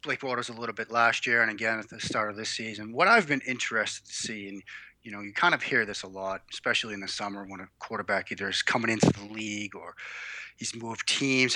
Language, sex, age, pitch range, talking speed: English, male, 30-49, 105-130 Hz, 250 wpm